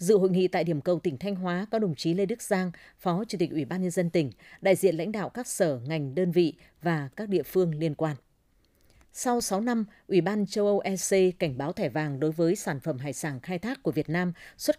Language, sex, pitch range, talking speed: Vietnamese, female, 165-200 Hz, 250 wpm